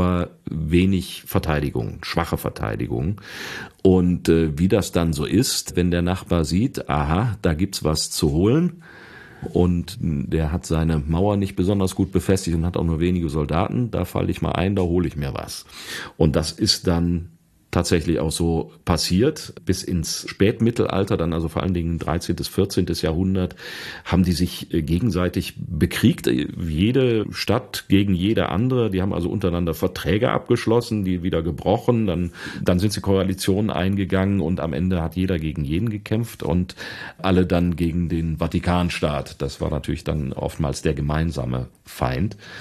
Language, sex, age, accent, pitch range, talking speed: German, male, 40-59, German, 80-95 Hz, 160 wpm